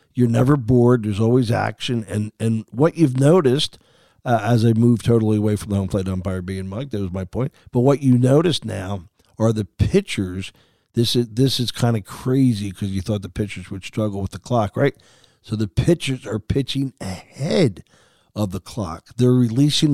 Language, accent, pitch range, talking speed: English, American, 105-135 Hz, 200 wpm